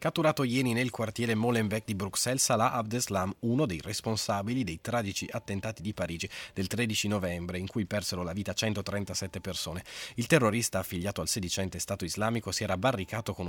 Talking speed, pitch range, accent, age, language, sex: 170 wpm, 90-120 Hz, native, 30-49, Italian, male